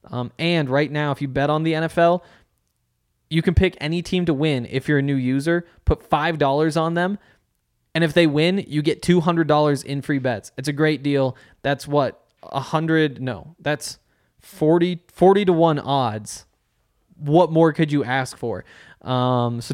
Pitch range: 130-160 Hz